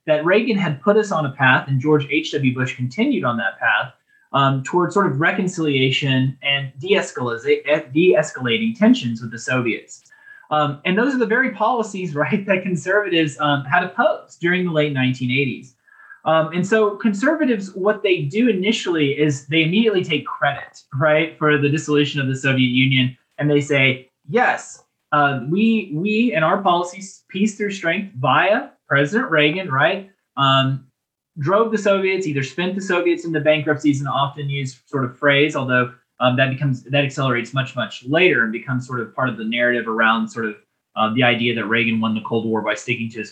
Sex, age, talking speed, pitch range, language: male, 20-39, 185 wpm, 130-185 Hz, English